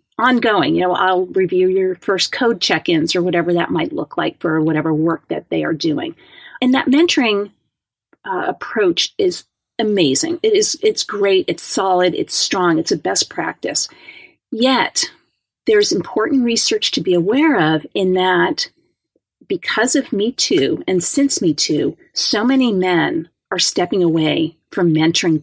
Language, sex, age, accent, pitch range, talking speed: English, female, 40-59, American, 175-280 Hz, 155 wpm